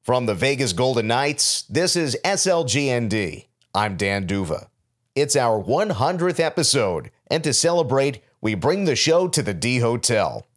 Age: 50-69